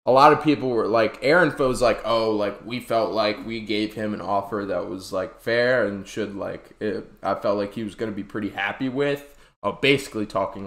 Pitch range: 105-135 Hz